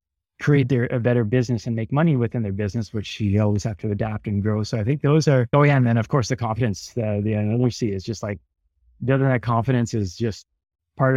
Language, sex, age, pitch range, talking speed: English, male, 30-49, 110-135 Hz, 240 wpm